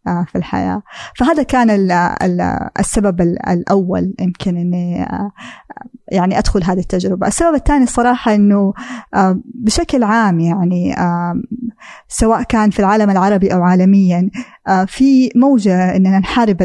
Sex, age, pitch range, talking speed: female, 20-39, 185-225 Hz, 110 wpm